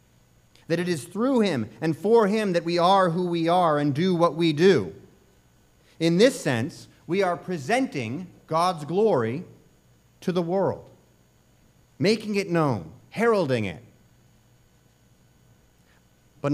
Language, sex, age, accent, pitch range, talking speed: English, male, 30-49, American, 125-180 Hz, 130 wpm